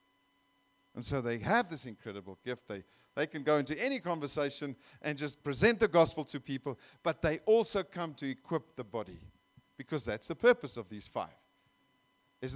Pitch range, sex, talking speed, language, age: 130-195 Hz, male, 175 wpm, English, 50-69